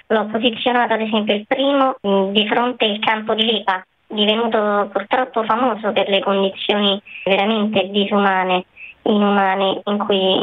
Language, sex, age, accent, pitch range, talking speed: Italian, male, 20-39, native, 200-235 Hz, 130 wpm